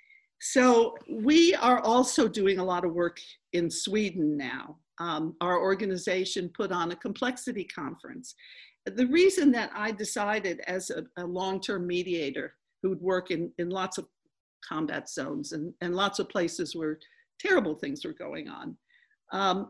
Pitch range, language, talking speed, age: 180-250 Hz, English, 150 wpm, 50-69